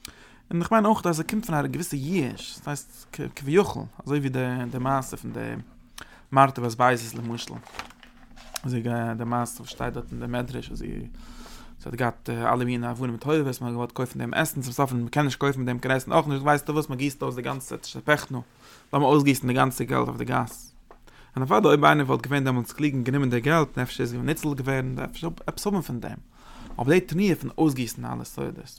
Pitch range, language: 120-155 Hz, English